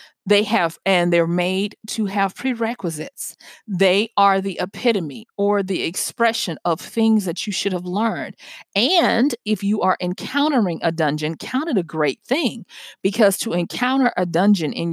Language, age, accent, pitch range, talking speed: English, 40-59, American, 175-230 Hz, 160 wpm